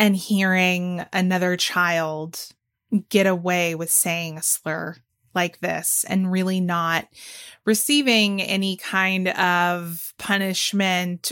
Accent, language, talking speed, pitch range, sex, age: American, English, 105 wpm, 175-195 Hz, female, 20-39